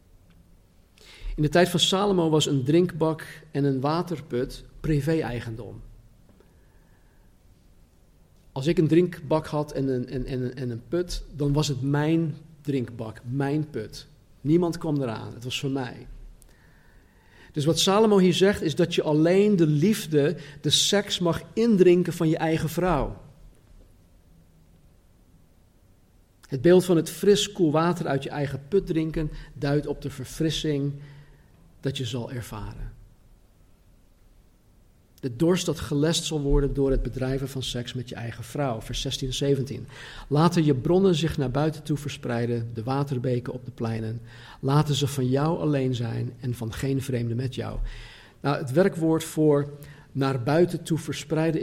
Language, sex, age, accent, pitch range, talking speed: Dutch, male, 50-69, Dutch, 120-155 Hz, 145 wpm